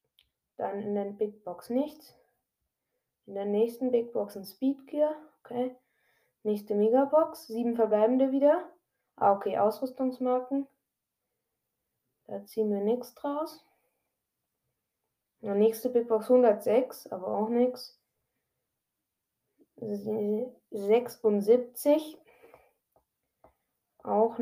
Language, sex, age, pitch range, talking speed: German, female, 20-39, 215-265 Hz, 95 wpm